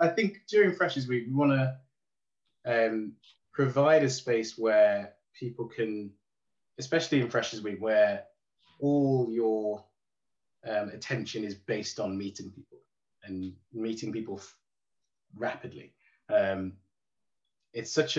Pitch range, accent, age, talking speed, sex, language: 105-135 Hz, British, 20-39, 120 wpm, male, English